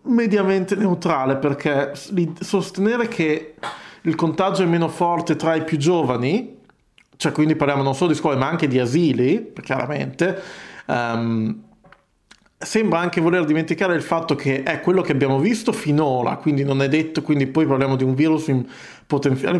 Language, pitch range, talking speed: Italian, 135-170 Hz, 160 wpm